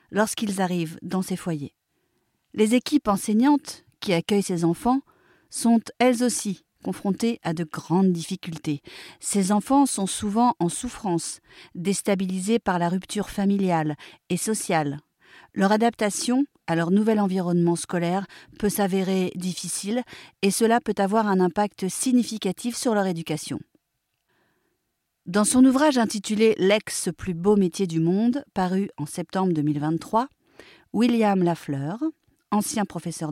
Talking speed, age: 120 wpm, 40-59